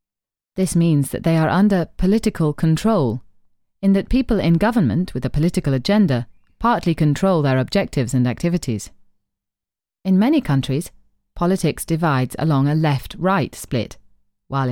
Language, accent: English, British